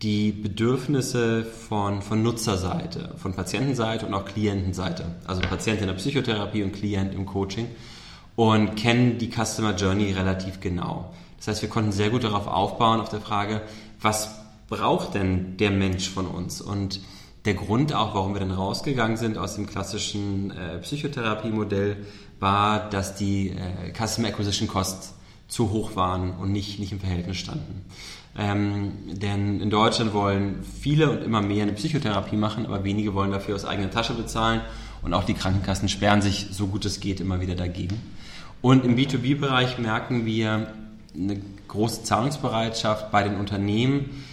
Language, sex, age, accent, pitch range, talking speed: German, male, 30-49, German, 100-115 Hz, 160 wpm